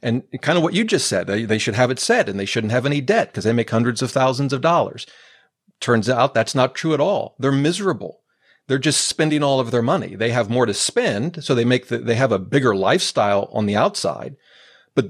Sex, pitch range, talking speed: male, 115-150 Hz, 230 wpm